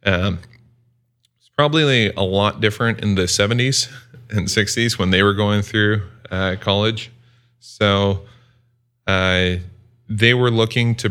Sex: male